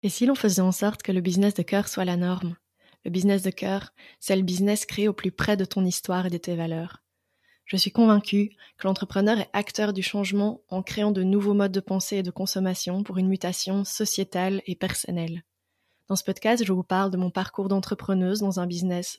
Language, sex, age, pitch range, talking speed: French, female, 20-39, 185-220 Hz, 220 wpm